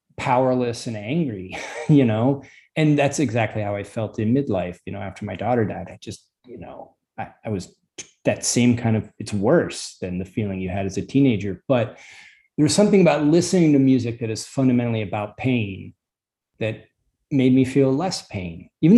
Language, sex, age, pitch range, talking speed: English, male, 30-49, 105-150 Hz, 190 wpm